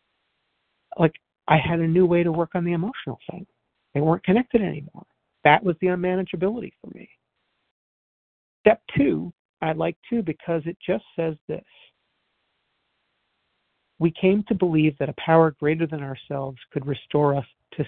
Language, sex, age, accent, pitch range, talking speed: English, male, 50-69, American, 145-185 Hz, 155 wpm